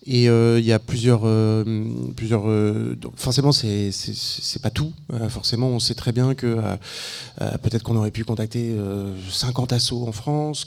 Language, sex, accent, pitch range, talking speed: French, male, French, 110-125 Hz, 180 wpm